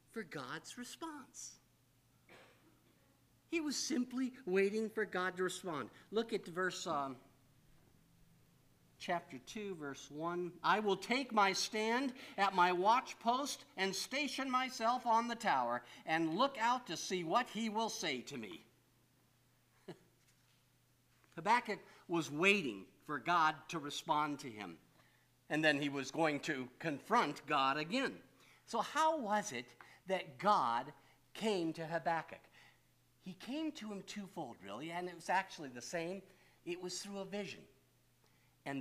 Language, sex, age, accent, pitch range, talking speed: English, male, 50-69, American, 140-225 Hz, 140 wpm